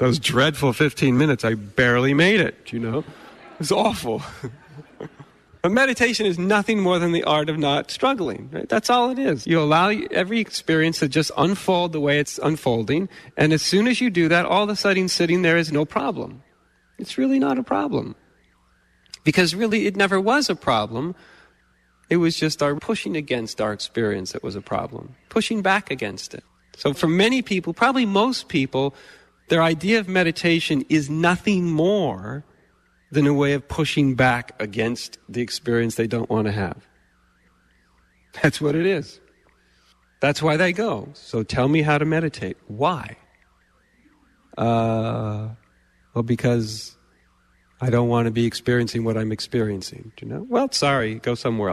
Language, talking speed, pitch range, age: English, 170 wpm, 115-175 Hz, 40-59